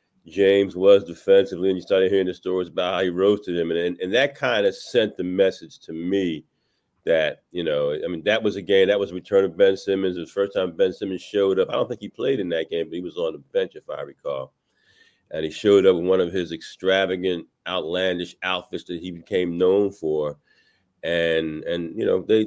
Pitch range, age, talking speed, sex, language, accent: 85-110 Hz, 40-59, 230 wpm, male, English, American